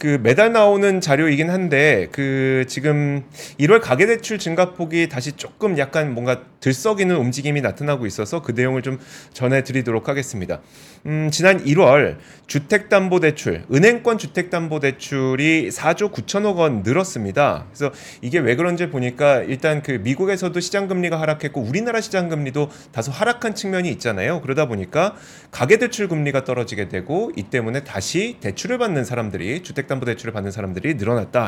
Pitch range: 130-185 Hz